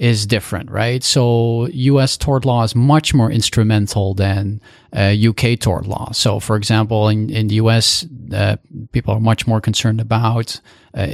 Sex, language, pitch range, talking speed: male, English, 110-125 Hz, 165 wpm